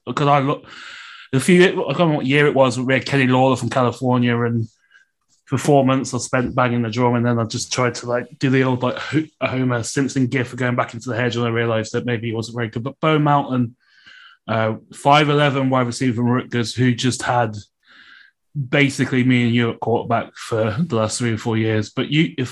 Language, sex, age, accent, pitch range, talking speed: English, male, 20-39, British, 120-140 Hz, 220 wpm